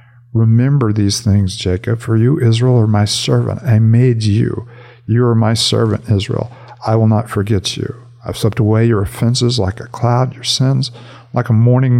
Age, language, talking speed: 50-69, English, 180 wpm